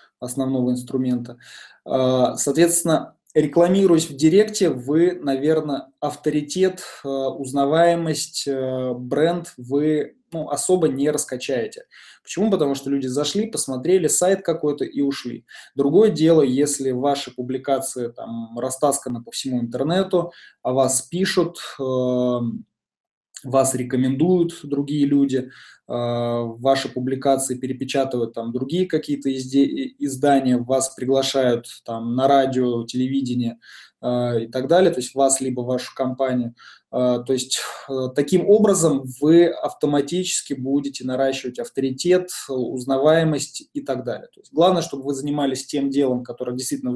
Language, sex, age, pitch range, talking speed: Russian, male, 20-39, 125-155 Hz, 120 wpm